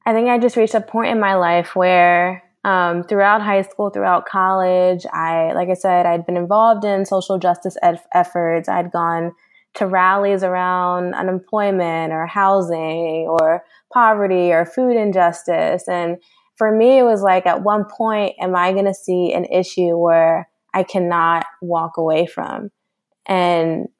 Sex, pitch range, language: female, 175-200 Hz, English